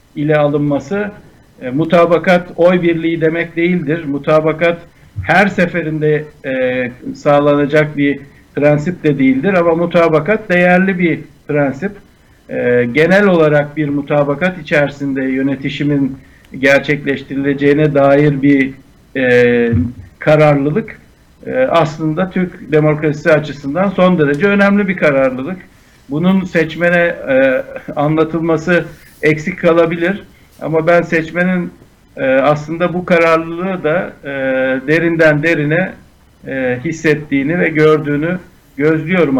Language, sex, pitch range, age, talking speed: Turkish, male, 145-175 Hz, 60-79, 100 wpm